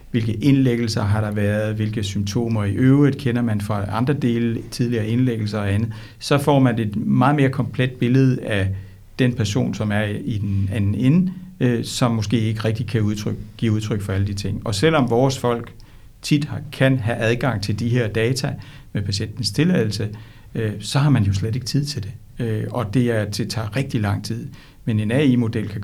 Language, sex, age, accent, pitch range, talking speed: Danish, male, 60-79, native, 105-125 Hz, 195 wpm